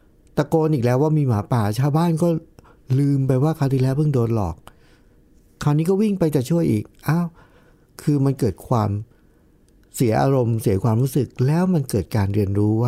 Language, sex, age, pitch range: Thai, male, 60-79, 105-145 Hz